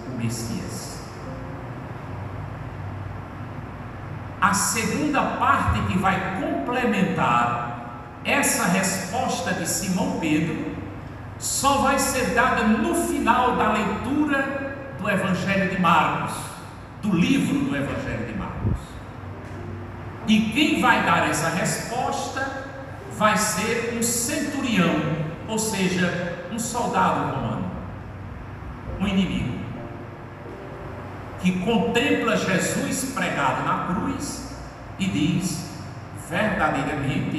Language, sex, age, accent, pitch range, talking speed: Portuguese, male, 60-79, Brazilian, 120-195 Hz, 90 wpm